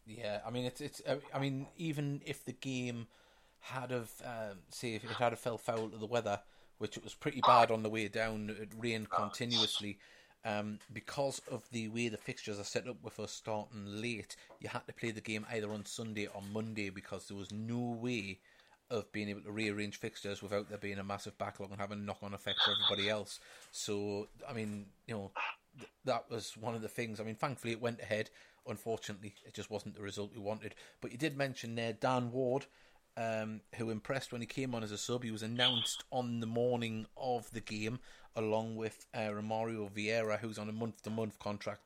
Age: 30-49